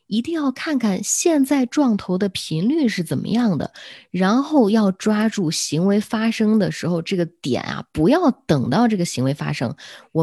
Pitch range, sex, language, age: 145-210 Hz, female, Chinese, 20-39